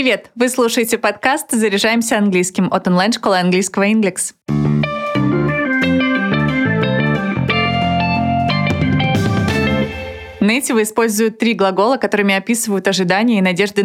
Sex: female